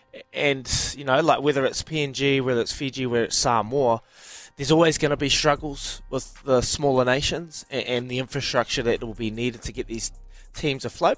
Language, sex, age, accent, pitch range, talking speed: English, male, 20-39, Australian, 115-160 Hz, 195 wpm